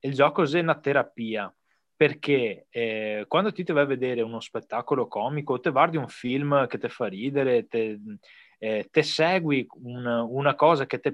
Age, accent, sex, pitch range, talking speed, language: 20-39, native, male, 120-170 Hz, 170 wpm, Italian